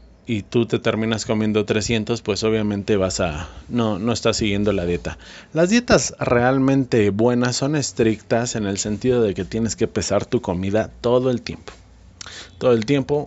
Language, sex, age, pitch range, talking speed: Spanish, male, 30-49, 95-125 Hz, 170 wpm